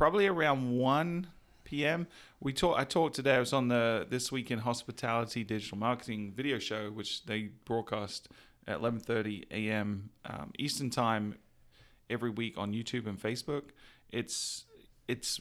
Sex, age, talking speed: male, 30-49, 150 wpm